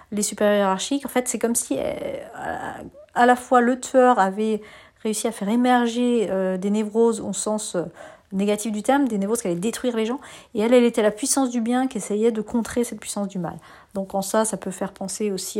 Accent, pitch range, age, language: French, 190-235 Hz, 40-59, French